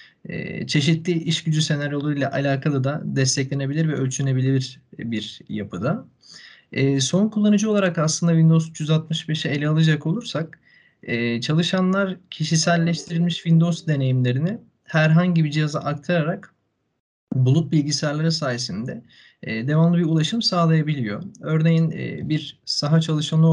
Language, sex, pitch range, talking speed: Turkish, male, 140-170 Hz, 100 wpm